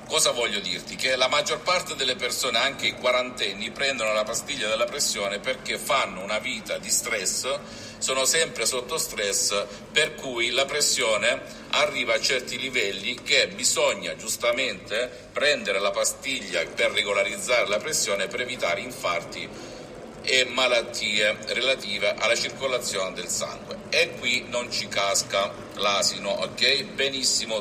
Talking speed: 135 wpm